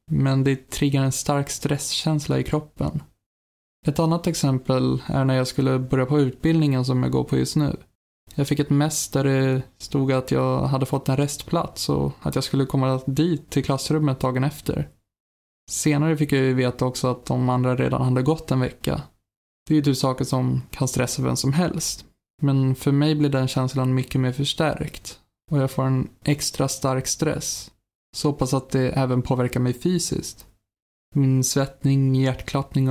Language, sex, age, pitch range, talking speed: Swedish, male, 20-39, 130-145 Hz, 180 wpm